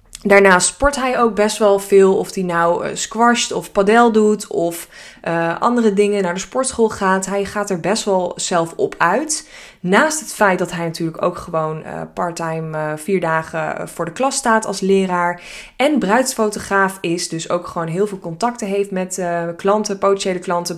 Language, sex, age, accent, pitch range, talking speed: Dutch, female, 20-39, Dutch, 175-215 Hz, 185 wpm